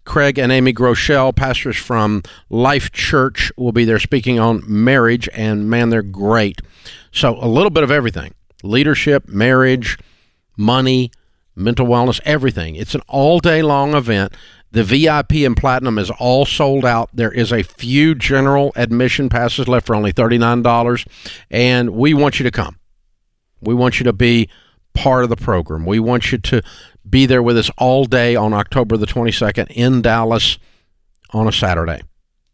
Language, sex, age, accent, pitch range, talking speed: English, male, 50-69, American, 100-130 Hz, 165 wpm